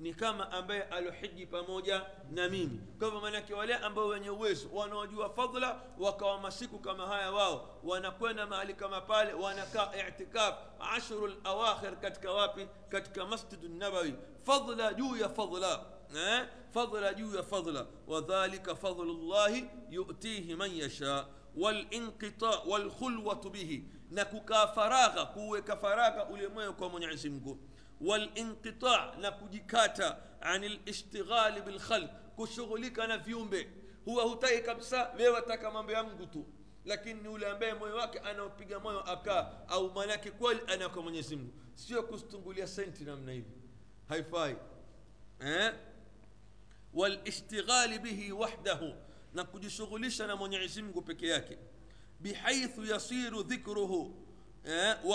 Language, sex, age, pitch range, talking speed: Swahili, male, 50-69, 180-220 Hz, 100 wpm